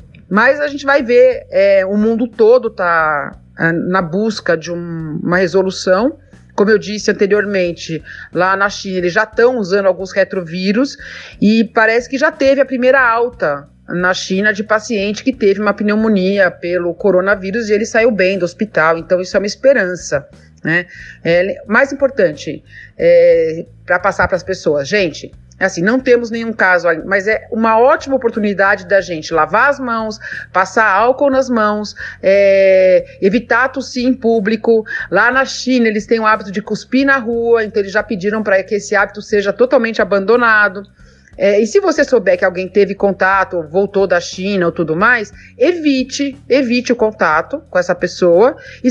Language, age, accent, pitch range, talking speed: Portuguese, 40-59, Brazilian, 190-245 Hz, 160 wpm